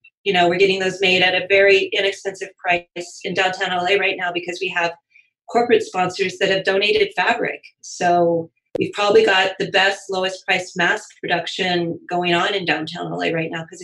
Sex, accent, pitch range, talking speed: female, American, 175-235 Hz, 185 wpm